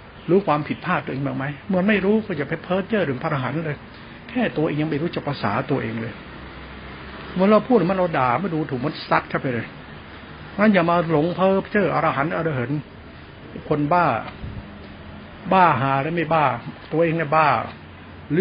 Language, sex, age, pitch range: Thai, male, 70-89, 120-155 Hz